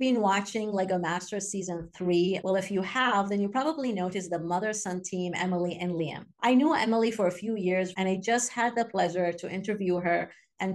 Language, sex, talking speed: English, female, 205 wpm